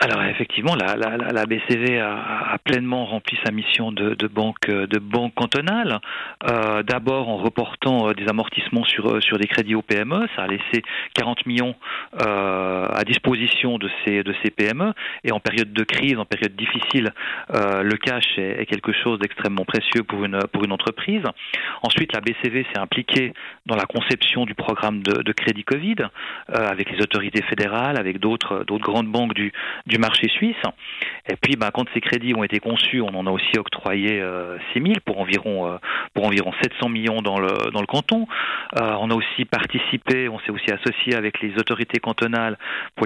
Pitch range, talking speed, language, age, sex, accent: 105-120 Hz, 190 wpm, French, 40-59, male, French